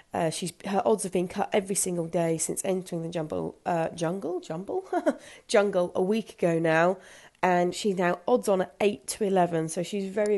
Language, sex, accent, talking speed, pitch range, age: English, female, British, 195 wpm, 170-195 Hz, 30-49